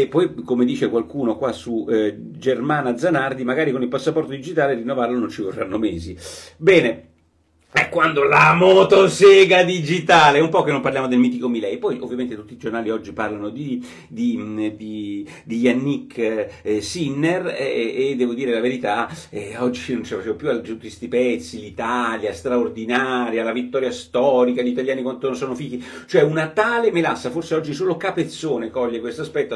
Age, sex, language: 40-59, male, Italian